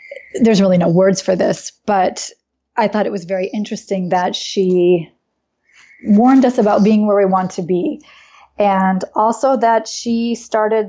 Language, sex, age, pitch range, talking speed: English, female, 20-39, 180-210 Hz, 160 wpm